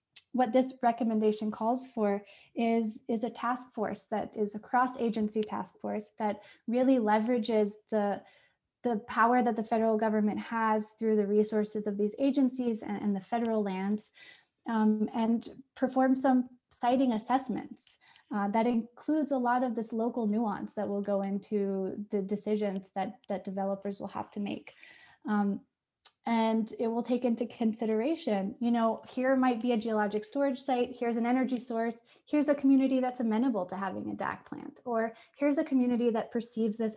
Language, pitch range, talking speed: English, 215-250 Hz, 165 wpm